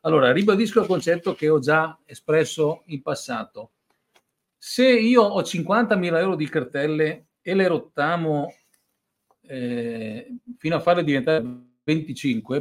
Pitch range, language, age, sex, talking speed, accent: 145-215 Hz, Italian, 50-69, male, 125 wpm, native